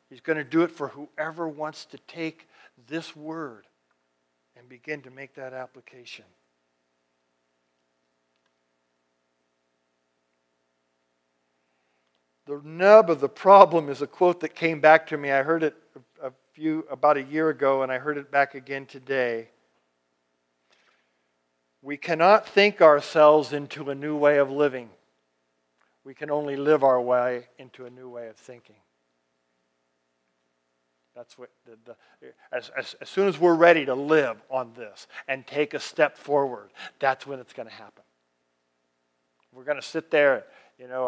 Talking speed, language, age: 150 wpm, English, 50-69